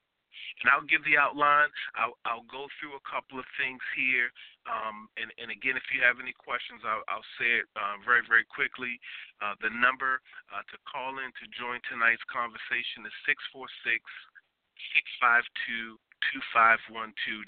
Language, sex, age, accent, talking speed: English, male, 40-59, American, 160 wpm